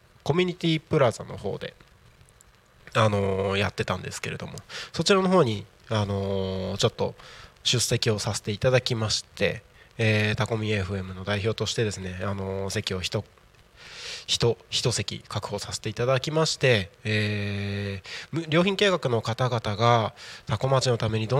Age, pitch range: 20-39, 105-130 Hz